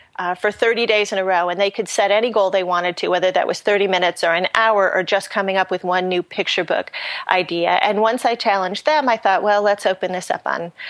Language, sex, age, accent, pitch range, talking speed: English, female, 30-49, American, 180-215 Hz, 260 wpm